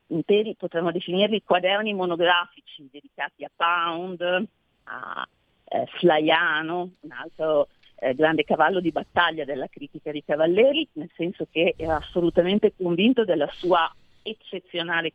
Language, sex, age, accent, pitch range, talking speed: Italian, female, 40-59, native, 170-245 Hz, 120 wpm